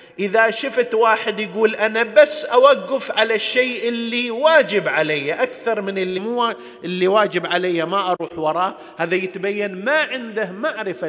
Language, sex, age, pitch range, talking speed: Arabic, male, 50-69, 155-215 Hz, 145 wpm